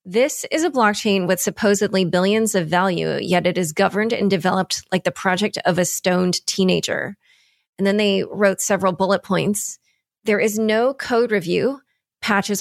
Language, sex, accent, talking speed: English, female, American, 165 wpm